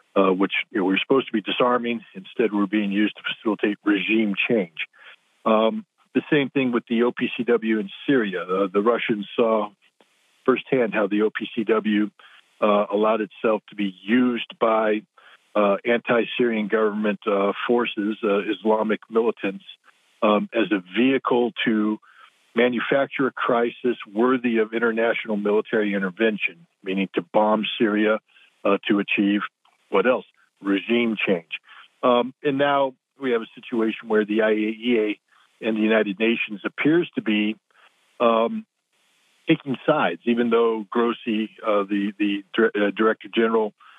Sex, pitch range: male, 105-120 Hz